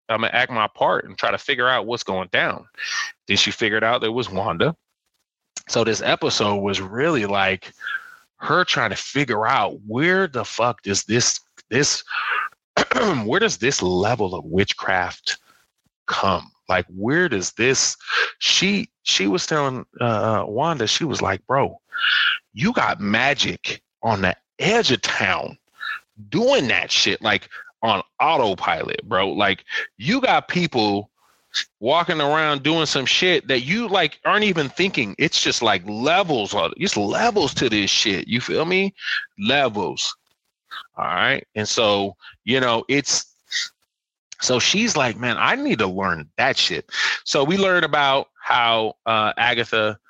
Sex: male